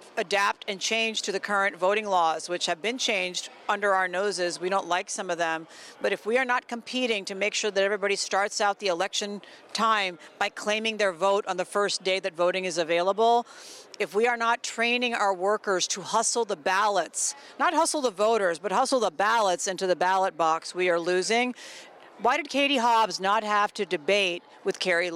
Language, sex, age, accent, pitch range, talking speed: English, female, 40-59, American, 185-230 Hz, 205 wpm